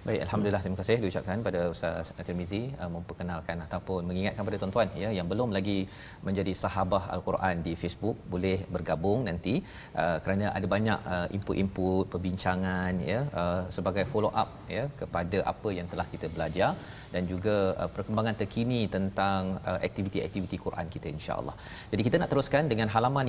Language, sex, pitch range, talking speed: Malayalam, male, 90-110 Hz, 150 wpm